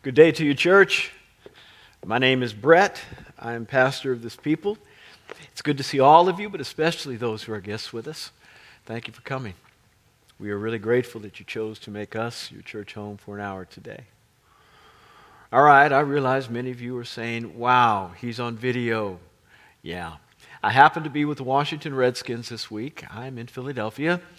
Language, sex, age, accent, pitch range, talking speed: English, male, 50-69, American, 110-140 Hz, 190 wpm